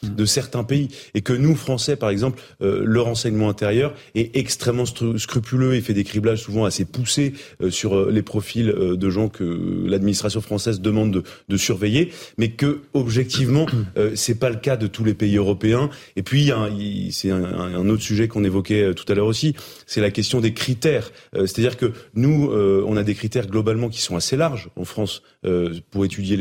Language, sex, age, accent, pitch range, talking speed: French, male, 30-49, French, 105-130 Hz, 215 wpm